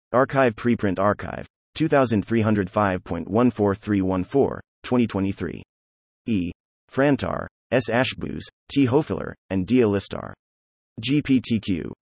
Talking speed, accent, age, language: 70 wpm, American, 30-49, English